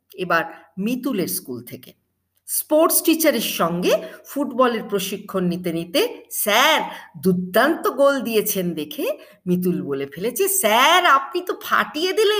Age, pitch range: 50-69, 160-230 Hz